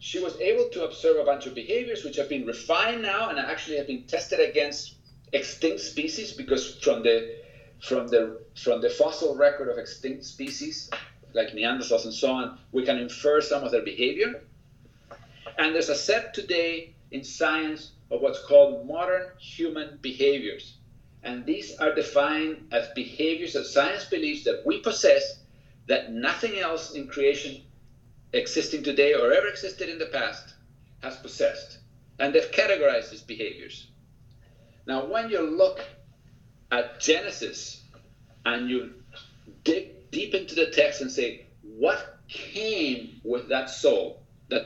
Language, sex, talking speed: English, male, 150 wpm